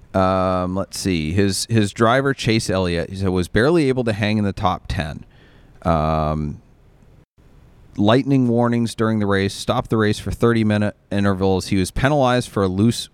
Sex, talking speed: male, 175 wpm